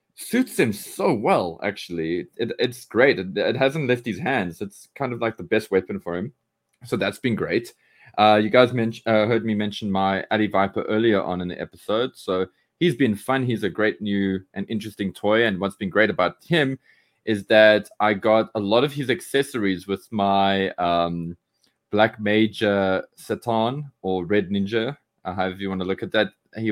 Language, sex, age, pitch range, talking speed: English, male, 20-39, 95-120 Hz, 195 wpm